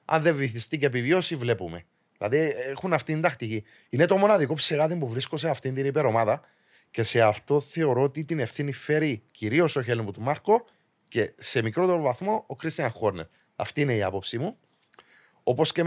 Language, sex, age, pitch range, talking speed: Greek, male, 30-49, 110-155 Hz, 180 wpm